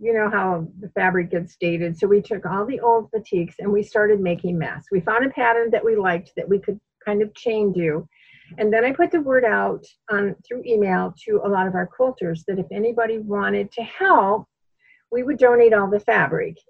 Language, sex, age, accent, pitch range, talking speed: English, female, 50-69, American, 190-230 Hz, 220 wpm